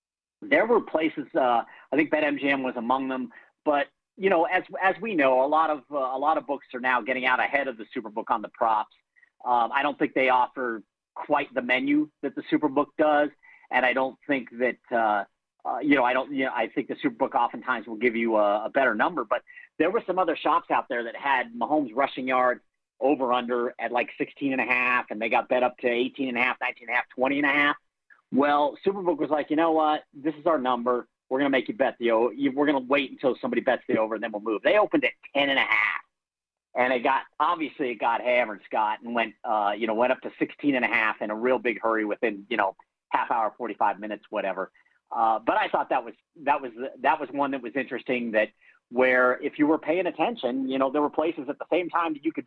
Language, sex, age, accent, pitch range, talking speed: English, male, 40-59, American, 125-150 Hz, 250 wpm